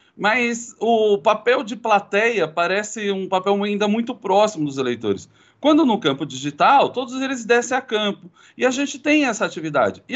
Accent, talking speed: Brazilian, 170 wpm